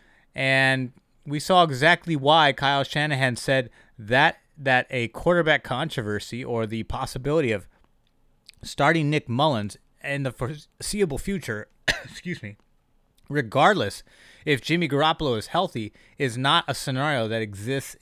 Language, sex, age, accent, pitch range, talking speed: English, male, 30-49, American, 115-150 Hz, 125 wpm